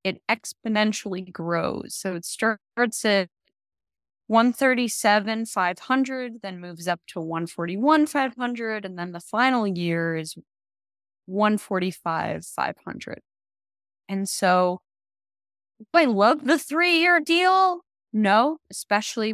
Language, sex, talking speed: English, female, 95 wpm